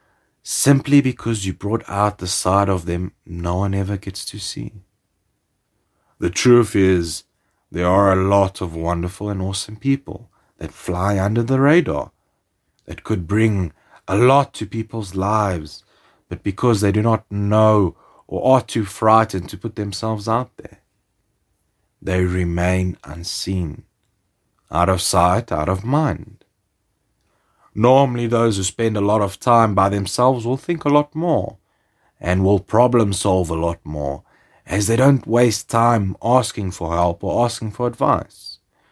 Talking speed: 150 wpm